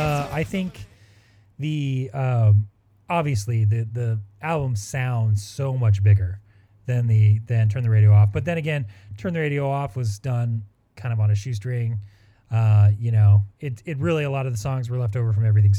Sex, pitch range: male, 105-140 Hz